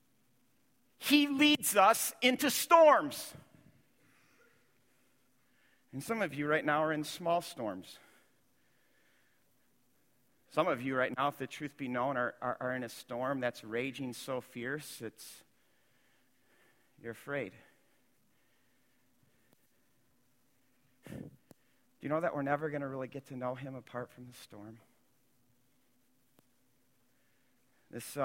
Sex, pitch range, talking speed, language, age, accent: male, 110-135 Hz, 120 wpm, English, 50-69, American